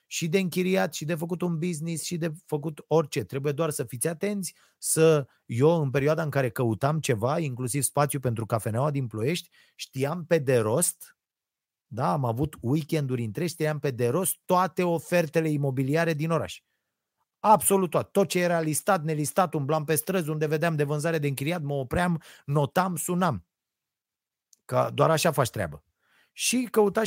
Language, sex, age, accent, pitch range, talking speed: Romanian, male, 30-49, native, 140-180 Hz, 170 wpm